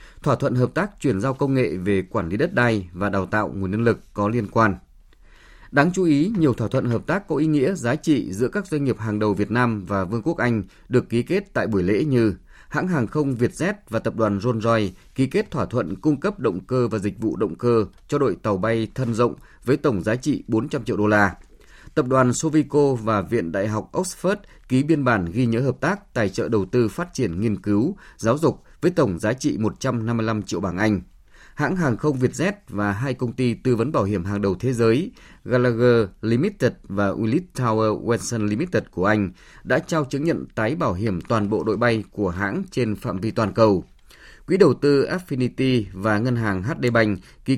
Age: 20-39